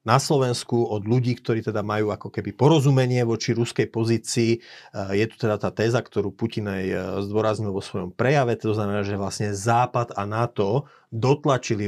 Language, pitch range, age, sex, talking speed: Slovak, 105-120 Hz, 40-59, male, 165 wpm